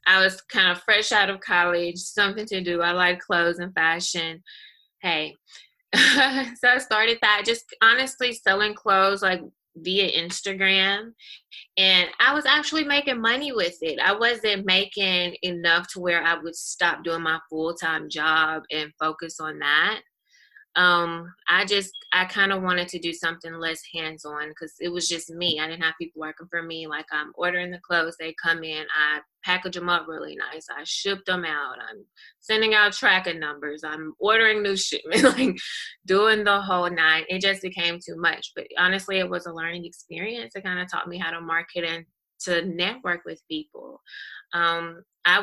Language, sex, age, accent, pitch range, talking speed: English, female, 20-39, American, 165-200 Hz, 180 wpm